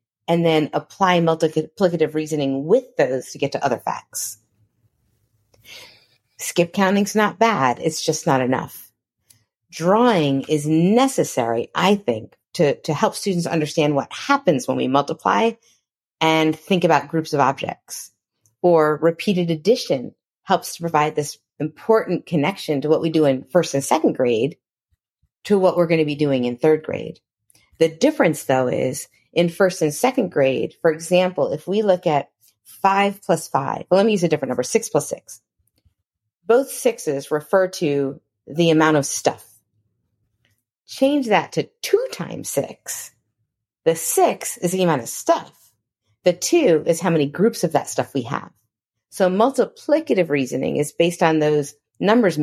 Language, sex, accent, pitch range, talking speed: English, female, American, 130-185 Hz, 155 wpm